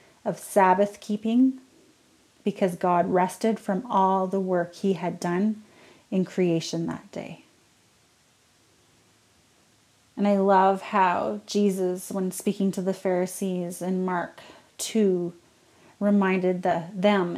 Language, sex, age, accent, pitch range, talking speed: English, female, 30-49, American, 180-205 Hz, 105 wpm